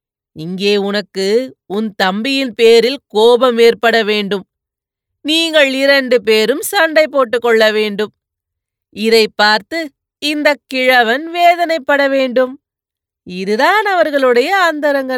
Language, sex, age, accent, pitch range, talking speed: Tamil, female, 30-49, native, 225-275 Hz, 90 wpm